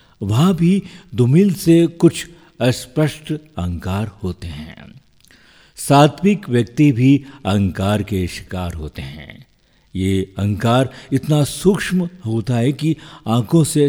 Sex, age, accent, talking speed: male, 50-69, native, 110 wpm